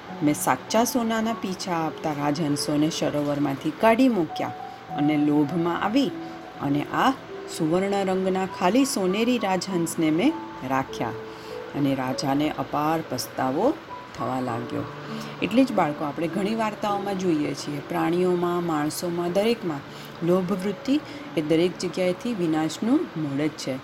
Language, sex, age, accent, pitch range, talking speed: Gujarati, female, 40-59, native, 150-195 Hz, 110 wpm